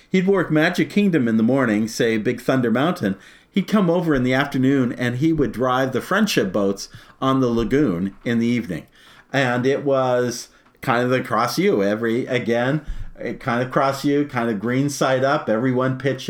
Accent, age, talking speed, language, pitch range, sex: American, 50-69, 185 wpm, English, 125-170 Hz, male